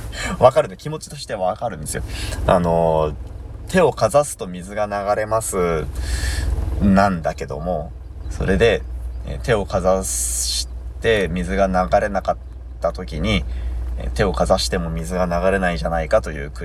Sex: male